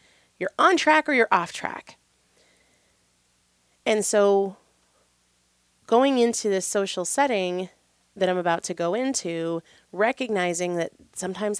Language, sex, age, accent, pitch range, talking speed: English, female, 30-49, American, 160-215 Hz, 120 wpm